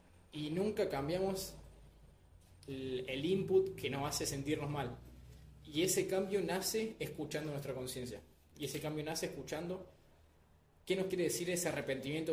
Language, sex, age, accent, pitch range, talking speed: Spanish, male, 20-39, Argentinian, 130-155 Hz, 135 wpm